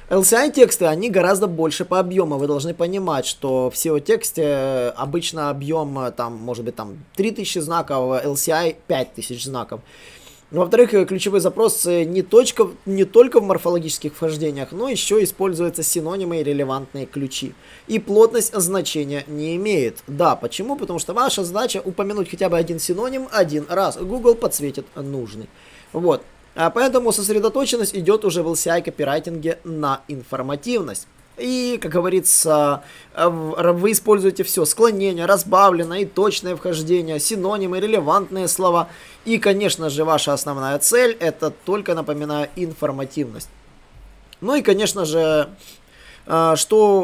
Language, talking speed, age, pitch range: Russian, 125 wpm, 20-39, 145-195 Hz